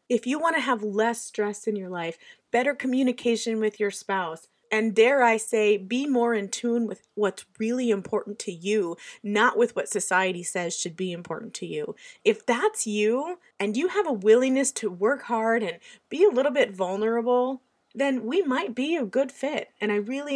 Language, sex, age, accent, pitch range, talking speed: English, female, 30-49, American, 210-260 Hz, 195 wpm